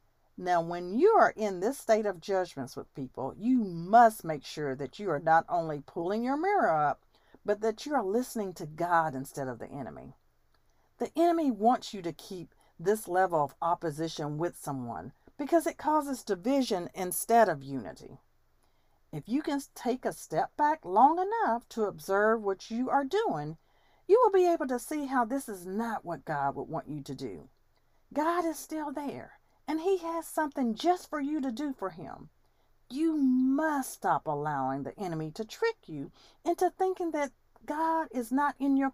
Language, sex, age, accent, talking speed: English, female, 50-69, American, 180 wpm